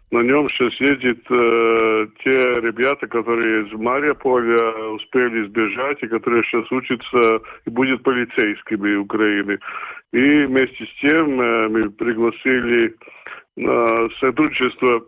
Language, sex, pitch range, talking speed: Russian, male, 110-130 Hz, 115 wpm